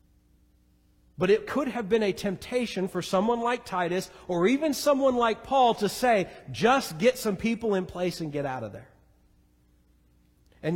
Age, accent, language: 40-59, American, English